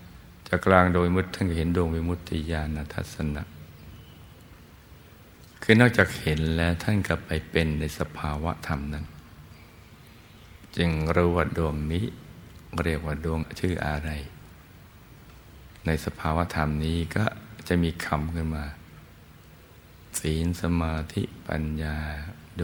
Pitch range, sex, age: 80-90 Hz, male, 60-79